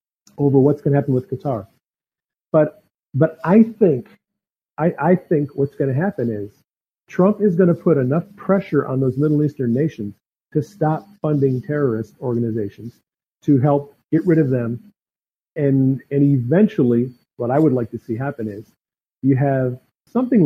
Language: English